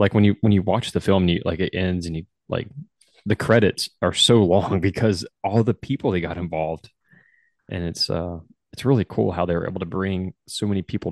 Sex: male